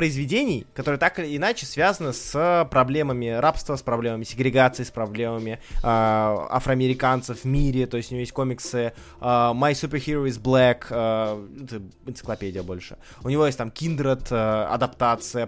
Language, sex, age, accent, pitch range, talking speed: Russian, male, 20-39, native, 125-170 Hz, 145 wpm